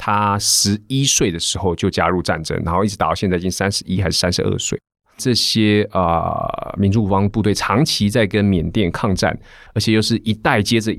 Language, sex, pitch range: Chinese, male, 95-115 Hz